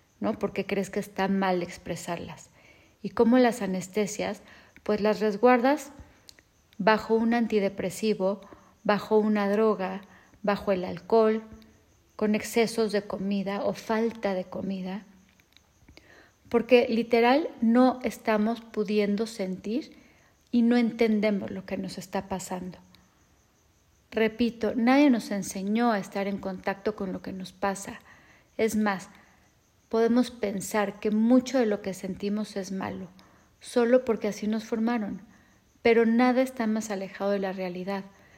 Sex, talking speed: female, 130 wpm